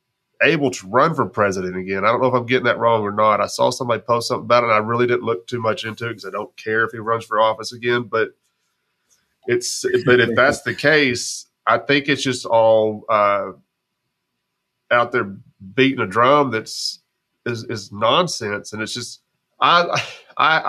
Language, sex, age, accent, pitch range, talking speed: English, male, 30-49, American, 110-130 Hz, 200 wpm